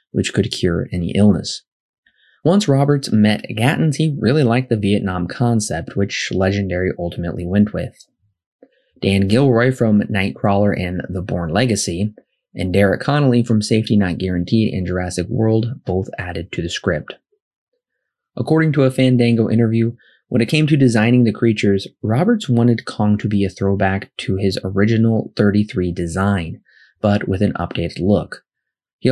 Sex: male